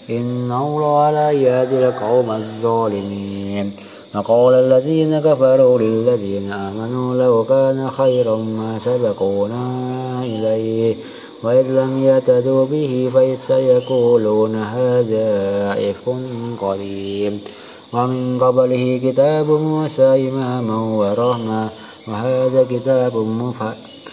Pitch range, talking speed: 110-130 Hz, 80 wpm